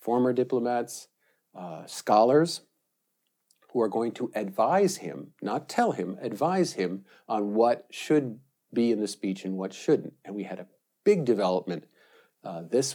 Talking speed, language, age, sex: 155 wpm, English, 50-69, male